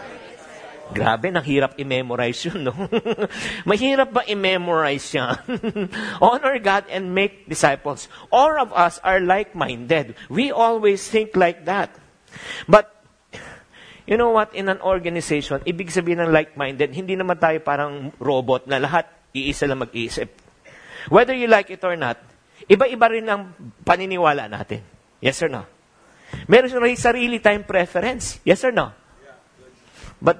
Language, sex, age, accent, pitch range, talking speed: English, male, 50-69, Filipino, 140-195 Hz, 135 wpm